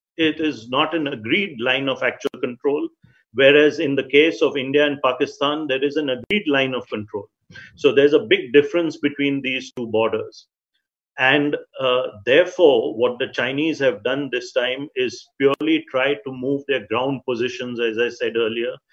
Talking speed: 175 wpm